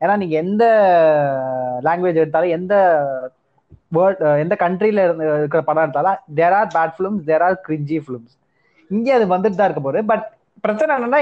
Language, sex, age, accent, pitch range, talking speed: Tamil, male, 20-39, native, 160-215 Hz, 155 wpm